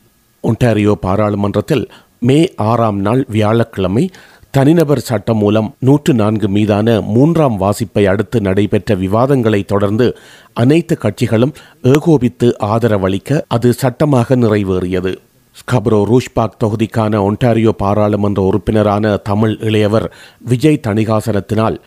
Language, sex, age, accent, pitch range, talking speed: Tamil, male, 40-59, native, 105-130 Hz, 95 wpm